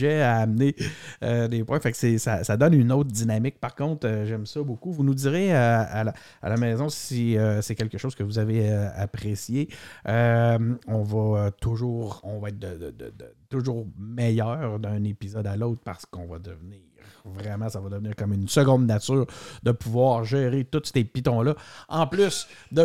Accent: Canadian